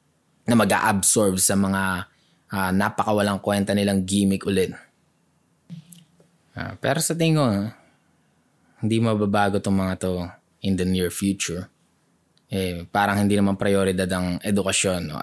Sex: male